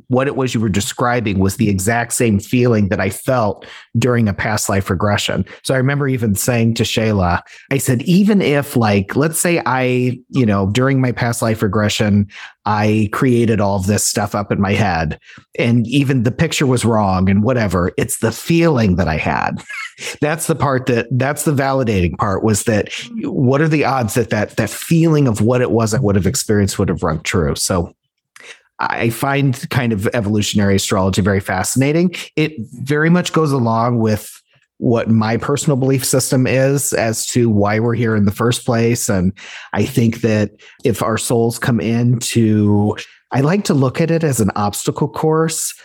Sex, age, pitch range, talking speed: male, 40-59, 105-140 Hz, 190 wpm